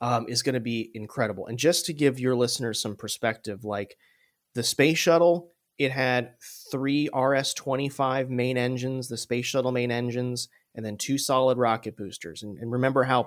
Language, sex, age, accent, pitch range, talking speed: English, male, 30-49, American, 115-140 Hz, 175 wpm